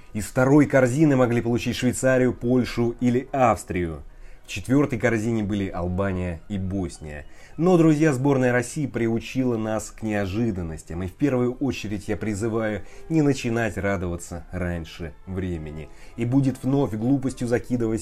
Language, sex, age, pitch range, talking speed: Russian, male, 30-49, 90-125 Hz, 135 wpm